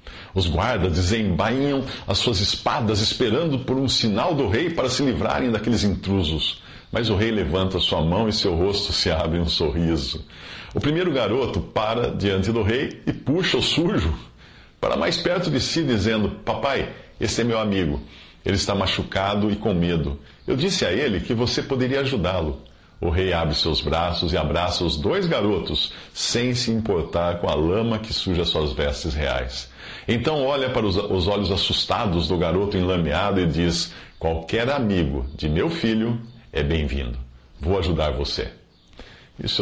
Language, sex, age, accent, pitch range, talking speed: Portuguese, male, 50-69, Brazilian, 80-115 Hz, 165 wpm